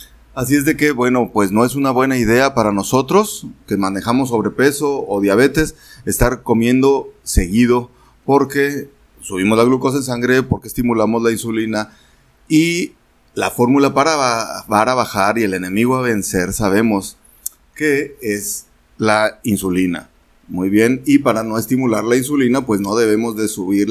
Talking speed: 150 wpm